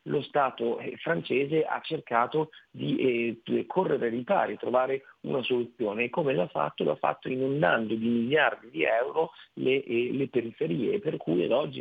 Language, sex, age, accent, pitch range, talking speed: Italian, male, 40-59, native, 115-135 Hz, 180 wpm